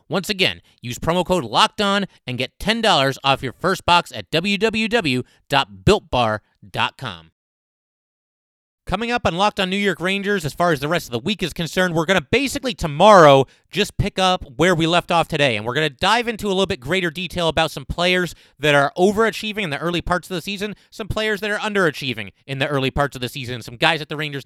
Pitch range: 130-175 Hz